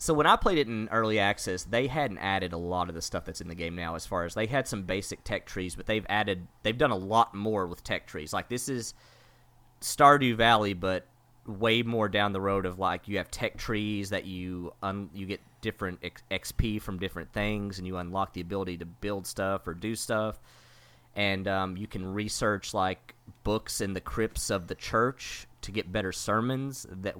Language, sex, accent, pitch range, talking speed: English, male, American, 95-115 Hz, 215 wpm